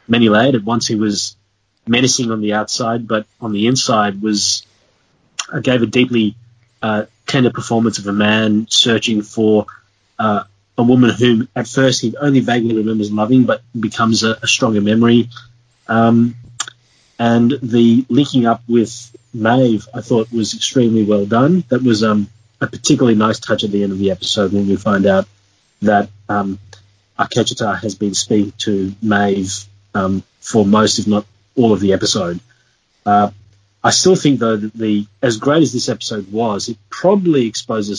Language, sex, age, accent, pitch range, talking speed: English, male, 30-49, Australian, 105-120 Hz, 165 wpm